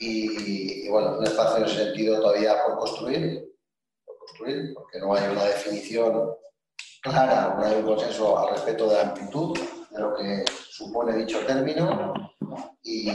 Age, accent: 40-59, Spanish